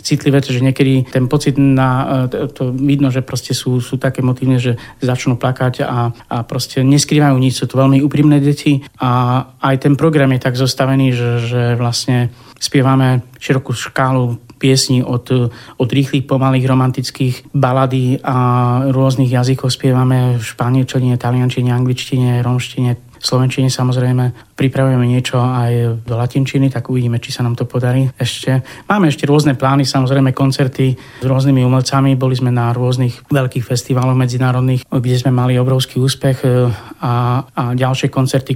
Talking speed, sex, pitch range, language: 150 wpm, male, 125-135 Hz, Slovak